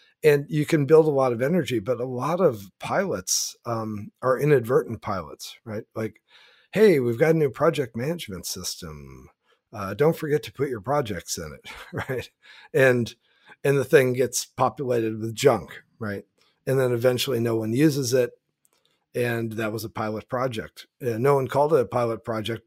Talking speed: 175 wpm